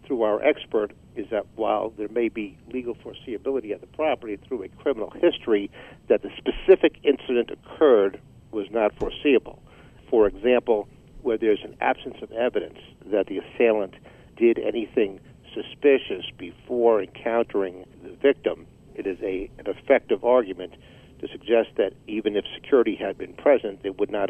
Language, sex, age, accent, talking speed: English, male, 60-79, American, 155 wpm